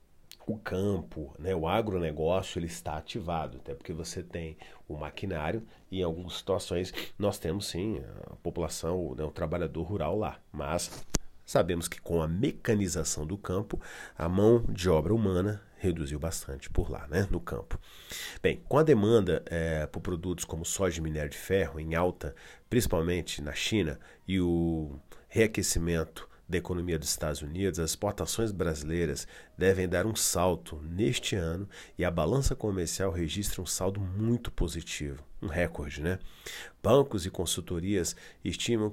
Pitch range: 80-100 Hz